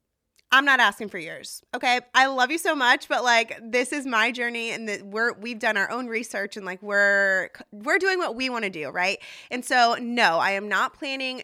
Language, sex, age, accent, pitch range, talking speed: English, female, 20-39, American, 195-235 Hz, 220 wpm